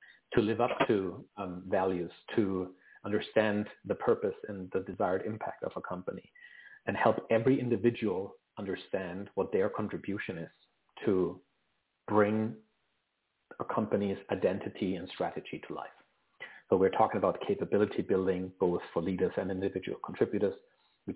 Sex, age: male, 30-49